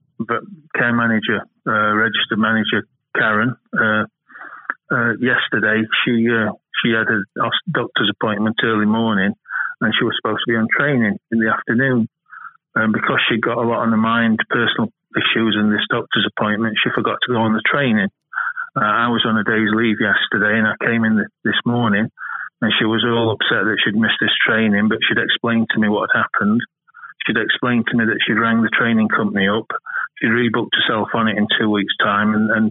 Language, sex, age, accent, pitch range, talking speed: English, male, 30-49, British, 110-125 Hz, 200 wpm